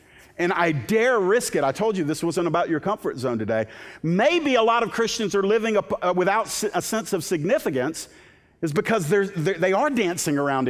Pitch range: 120-190 Hz